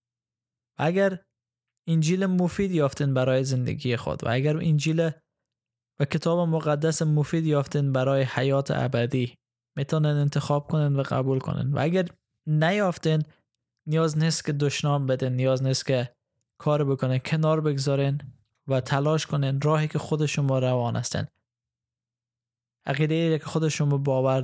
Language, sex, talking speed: Persian, male, 130 wpm